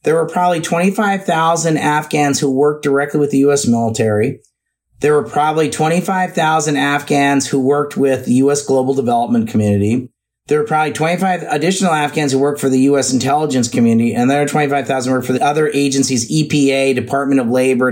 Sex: male